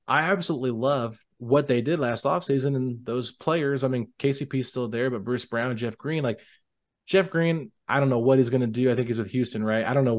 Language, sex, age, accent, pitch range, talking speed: English, male, 20-39, American, 115-135 Hz, 240 wpm